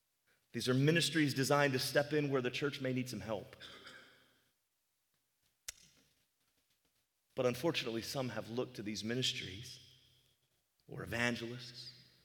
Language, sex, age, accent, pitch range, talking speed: English, male, 30-49, American, 120-165 Hz, 120 wpm